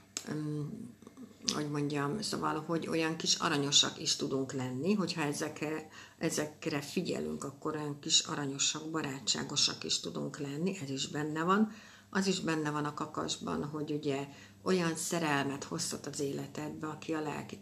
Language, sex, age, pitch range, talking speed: Hungarian, female, 60-79, 145-175 Hz, 145 wpm